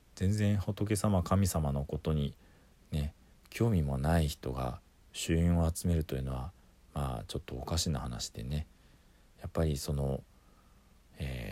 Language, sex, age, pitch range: Japanese, male, 40-59, 70-95 Hz